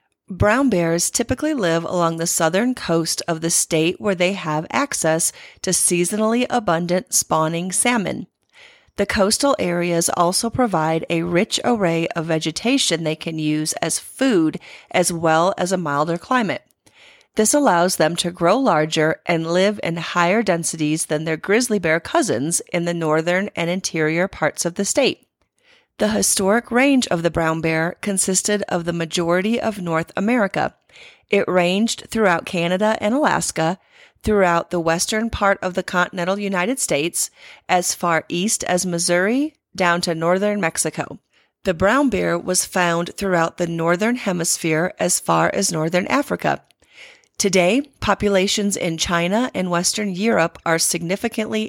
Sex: female